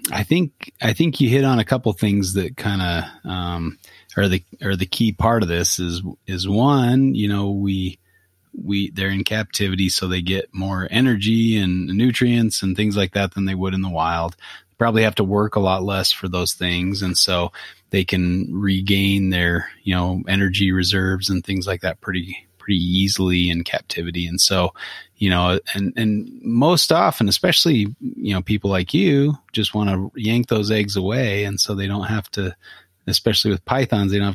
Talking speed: 190 wpm